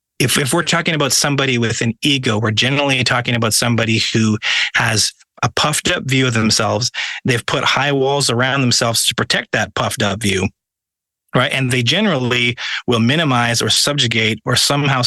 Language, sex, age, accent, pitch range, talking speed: English, male, 30-49, American, 115-130 Hz, 175 wpm